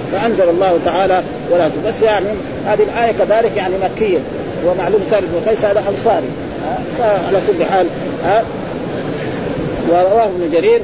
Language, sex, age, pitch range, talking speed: Arabic, male, 40-59, 170-225 Hz, 115 wpm